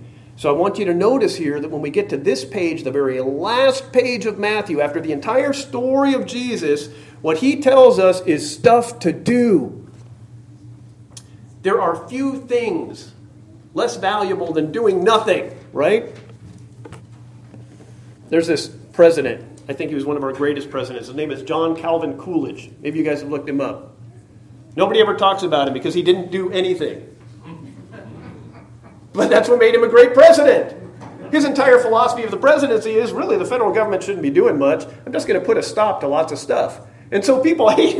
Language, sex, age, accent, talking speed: English, male, 40-59, American, 185 wpm